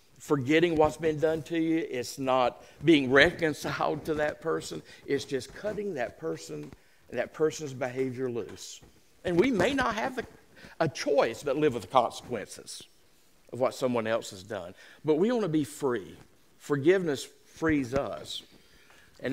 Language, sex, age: English, male, 50-69